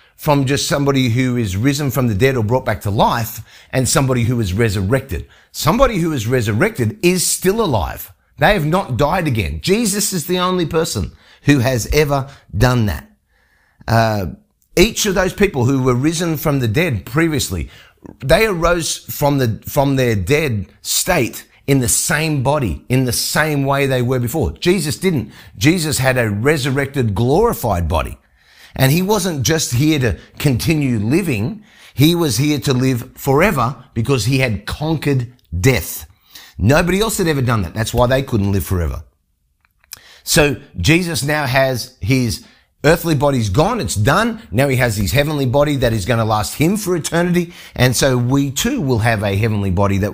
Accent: Australian